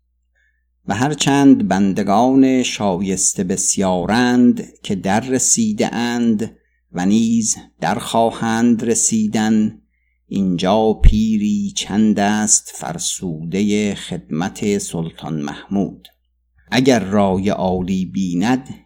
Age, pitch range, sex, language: 50-69, 85-115 Hz, male, Persian